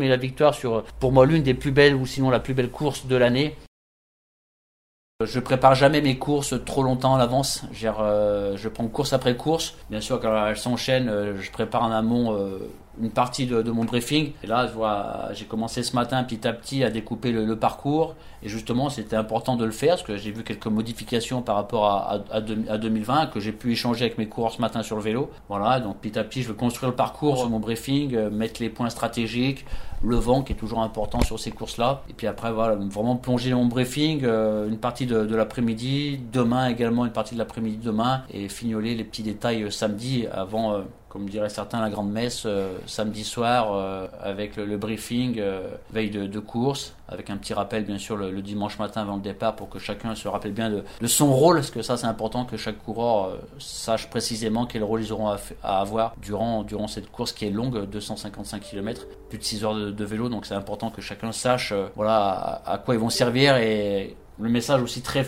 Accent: French